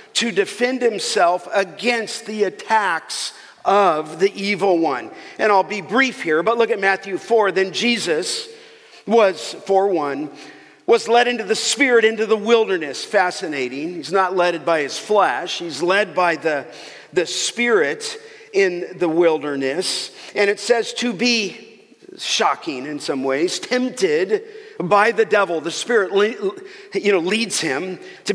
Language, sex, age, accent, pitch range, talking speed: English, male, 50-69, American, 190-285 Hz, 145 wpm